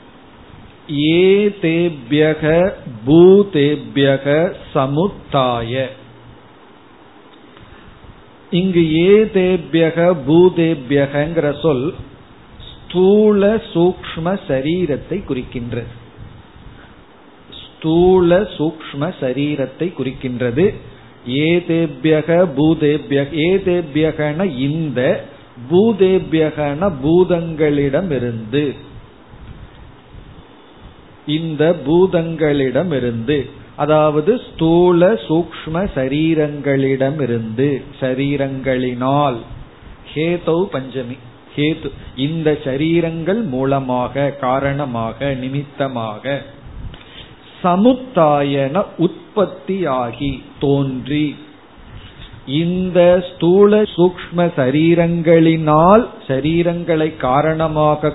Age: 50-69